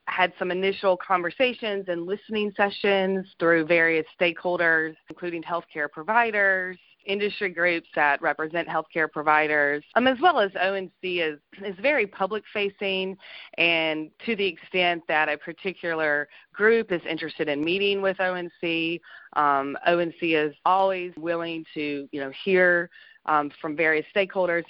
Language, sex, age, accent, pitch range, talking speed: English, female, 30-49, American, 160-200 Hz, 135 wpm